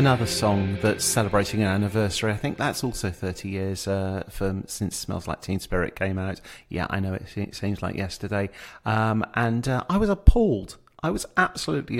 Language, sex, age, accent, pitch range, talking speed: English, male, 40-59, British, 95-115 Hz, 185 wpm